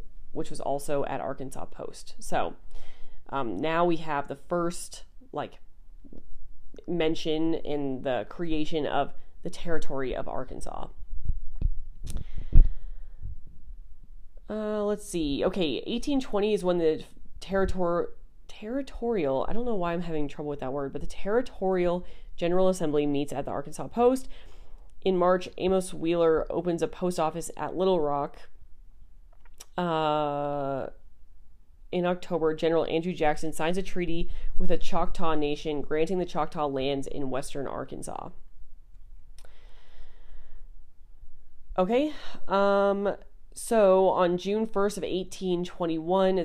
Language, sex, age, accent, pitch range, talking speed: English, female, 30-49, American, 135-180 Hz, 120 wpm